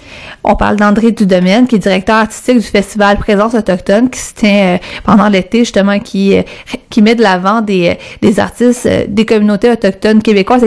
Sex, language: female, French